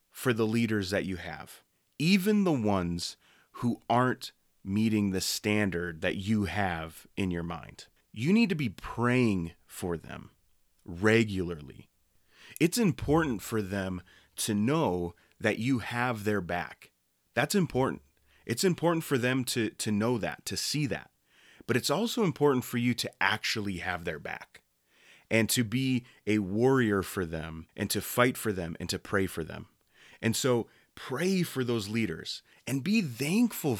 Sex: male